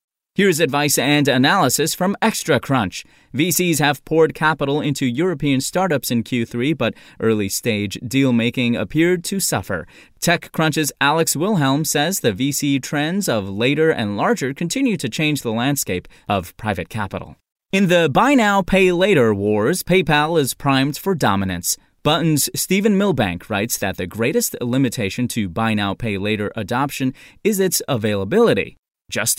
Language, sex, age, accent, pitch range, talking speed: English, male, 30-49, American, 120-175 Hz, 135 wpm